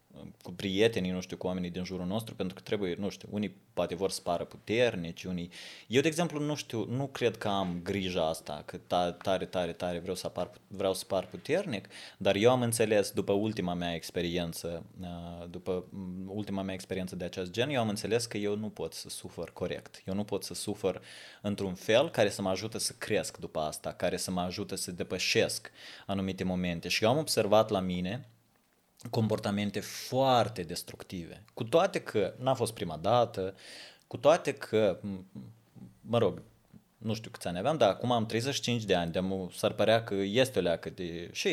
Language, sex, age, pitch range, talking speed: Russian, male, 20-39, 90-115 Hz, 190 wpm